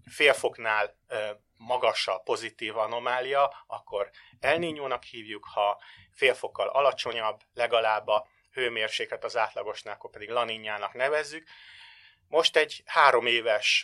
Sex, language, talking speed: male, Hungarian, 115 wpm